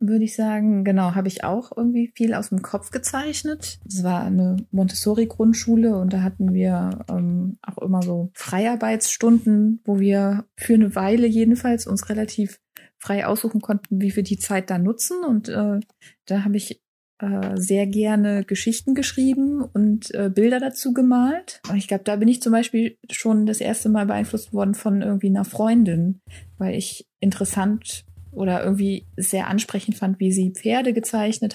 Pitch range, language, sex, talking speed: 195-225 Hz, German, female, 165 wpm